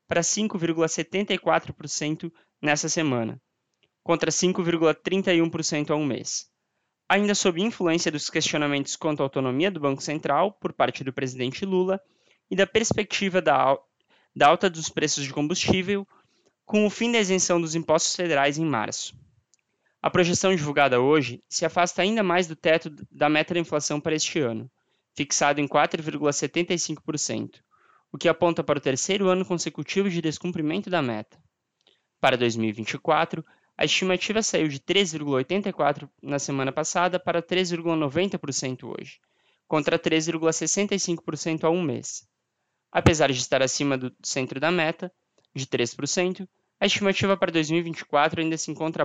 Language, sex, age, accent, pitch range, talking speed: Portuguese, male, 20-39, Brazilian, 145-180 Hz, 135 wpm